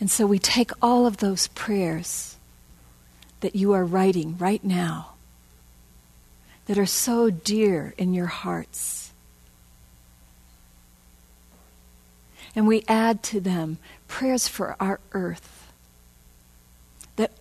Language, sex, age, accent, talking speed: English, female, 50-69, American, 105 wpm